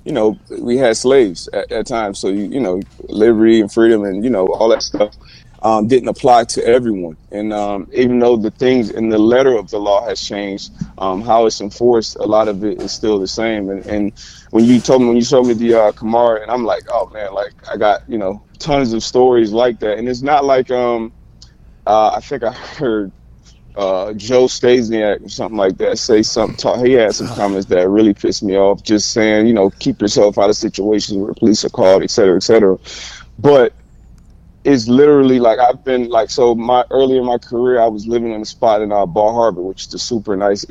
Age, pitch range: 20-39, 100-120 Hz